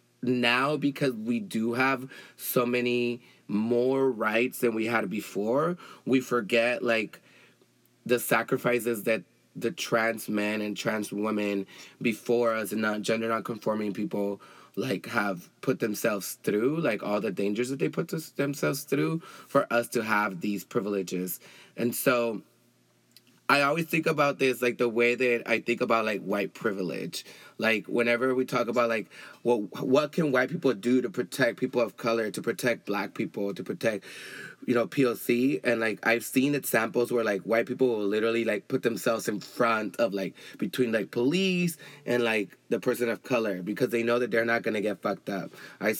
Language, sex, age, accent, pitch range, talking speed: English, male, 20-39, American, 110-125 Hz, 175 wpm